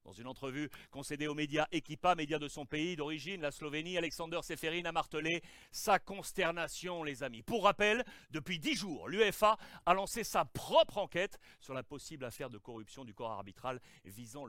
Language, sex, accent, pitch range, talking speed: French, male, French, 145-215 Hz, 180 wpm